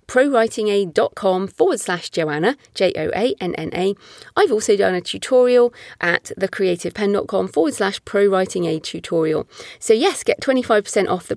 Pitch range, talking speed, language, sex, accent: 180-240 Hz, 115 wpm, English, female, British